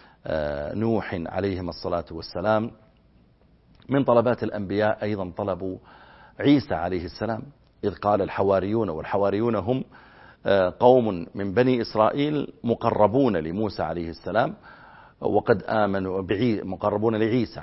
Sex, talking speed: male, 100 wpm